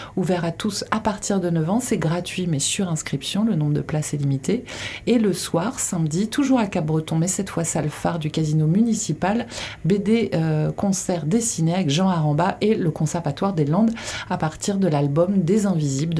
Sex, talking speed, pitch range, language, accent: female, 195 wpm, 160-205 Hz, French, French